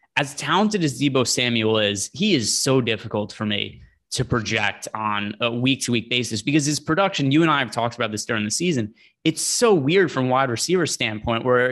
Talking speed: 205 wpm